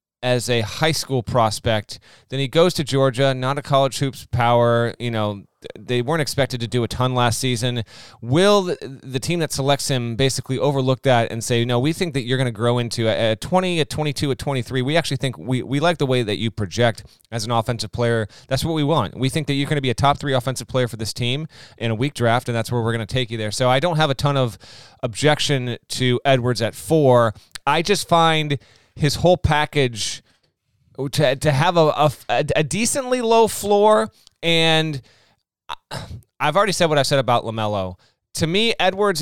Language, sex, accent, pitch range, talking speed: English, male, American, 120-150 Hz, 210 wpm